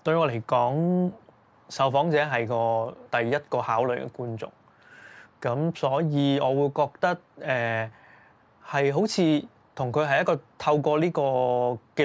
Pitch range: 120-150 Hz